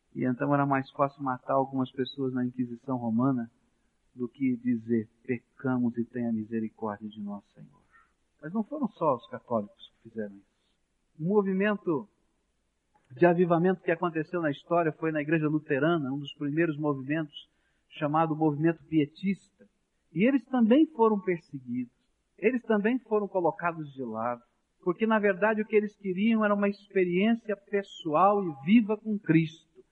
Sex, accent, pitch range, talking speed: male, Brazilian, 150-220 Hz, 150 wpm